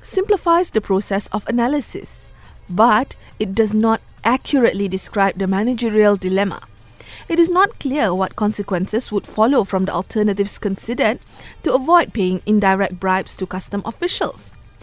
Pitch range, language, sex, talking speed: 190-255 Hz, English, female, 140 wpm